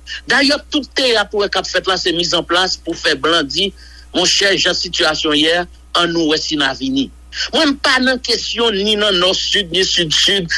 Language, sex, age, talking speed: English, male, 60-79, 180 wpm